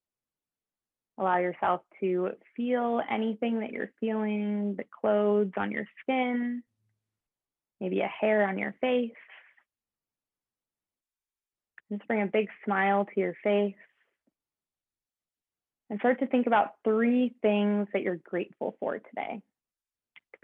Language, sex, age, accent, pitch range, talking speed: English, female, 20-39, American, 190-215 Hz, 115 wpm